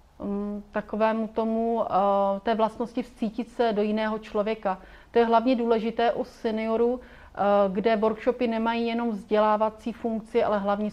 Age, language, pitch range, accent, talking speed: 30-49, Czech, 205-235 Hz, native, 125 wpm